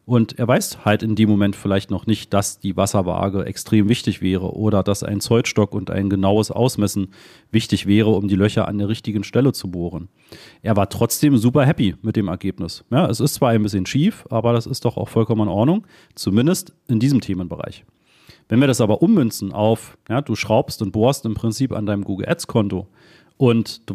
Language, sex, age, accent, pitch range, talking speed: German, male, 40-59, German, 100-130 Hz, 200 wpm